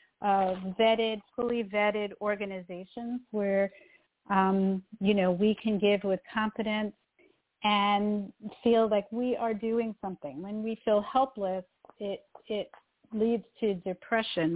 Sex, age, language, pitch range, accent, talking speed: female, 40-59, English, 195-220 Hz, American, 125 wpm